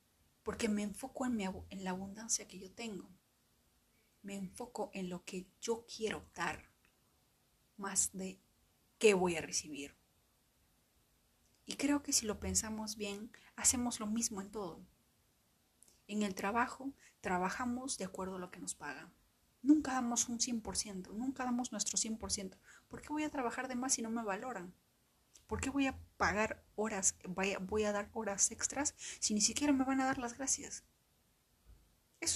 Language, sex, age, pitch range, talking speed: Spanish, female, 30-49, 195-250 Hz, 160 wpm